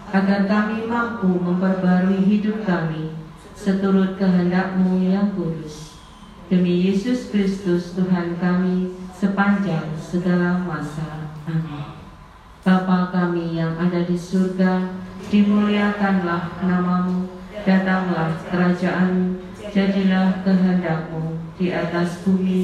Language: Indonesian